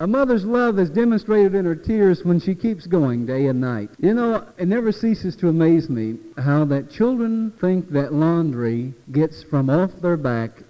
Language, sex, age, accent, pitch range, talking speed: English, male, 50-69, American, 125-180 Hz, 190 wpm